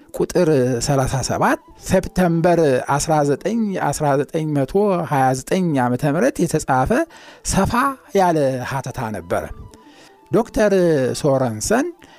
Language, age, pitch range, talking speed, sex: Amharic, 50-69, 130-195 Hz, 70 wpm, male